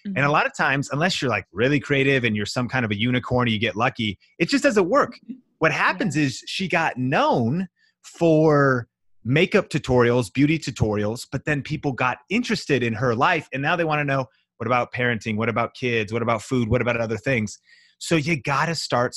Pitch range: 115-155 Hz